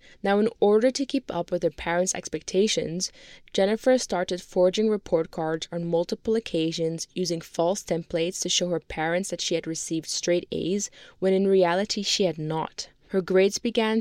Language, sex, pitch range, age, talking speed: English, female, 165-200 Hz, 20-39, 170 wpm